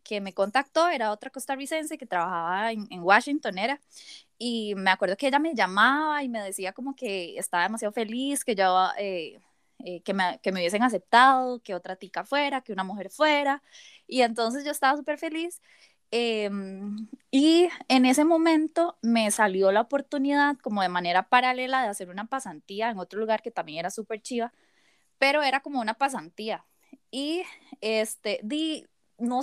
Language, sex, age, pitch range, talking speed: Spanish, female, 10-29, 205-280 Hz, 175 wpm